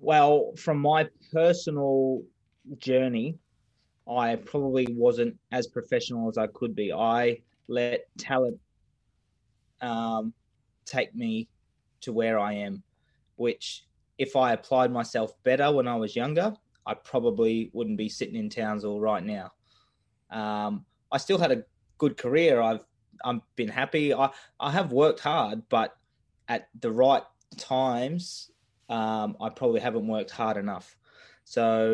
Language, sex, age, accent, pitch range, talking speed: English, male, 20-39, Australian, 110-130 Hz, 135 wpm